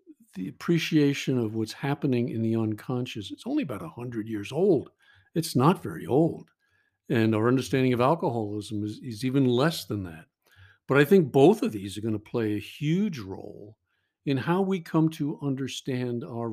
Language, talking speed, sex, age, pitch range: English, 180 wpm, male, 50-69, 105-135 Hz